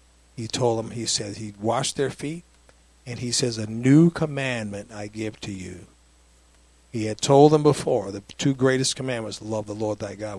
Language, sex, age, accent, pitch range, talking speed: English, male, 50-69, American, 100-125 Hz, 190 wpm